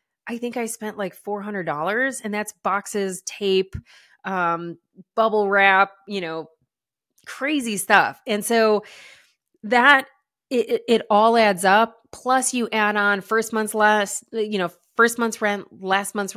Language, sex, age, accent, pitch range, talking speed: English, female, 20-39, American, 185-225 Hz, 150 wpm